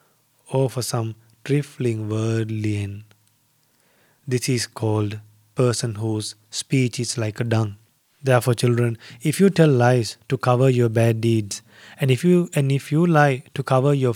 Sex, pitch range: male, 110-140 Hz